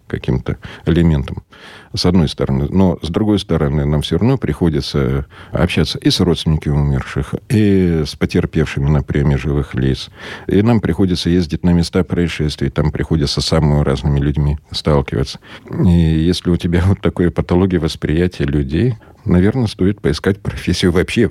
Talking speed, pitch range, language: 150 wpm, 75-95 Hz, Russian